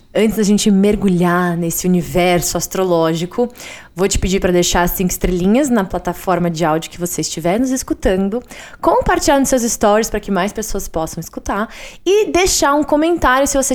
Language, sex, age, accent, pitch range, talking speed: Portuguese, female, 20-39, Brazilian, 190-265 Hz, 175 wpm